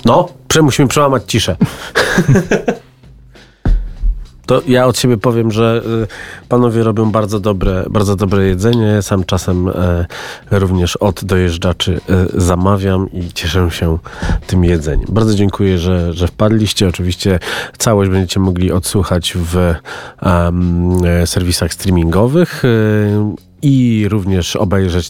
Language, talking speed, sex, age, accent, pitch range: Polish, 105 wpm, male, 30-49, native, 85-105 Hz